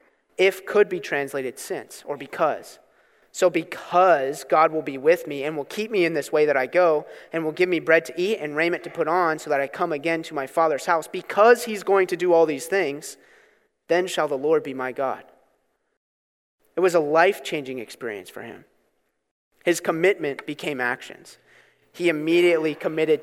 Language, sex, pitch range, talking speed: English, male, 145-180 Hz, 190 wpm